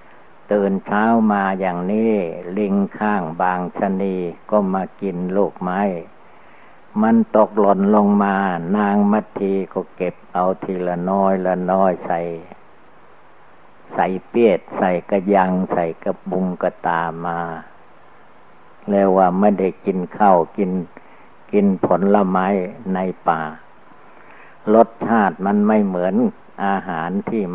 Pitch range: 90-105 Hz